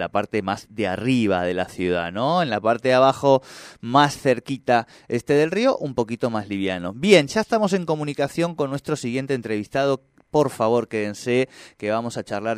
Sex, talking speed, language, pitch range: male, 185 wpm, Spanish, 100-130 Hz